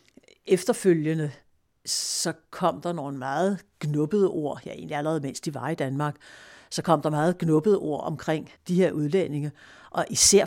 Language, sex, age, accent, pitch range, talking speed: Danish, female, 60-79, native, 145-175 Hz, 160 wpm